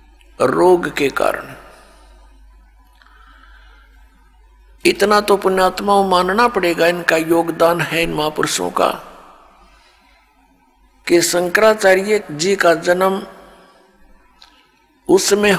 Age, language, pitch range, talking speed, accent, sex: 60-79, Hindi, 175-205 Hz, 75 wpm, native, male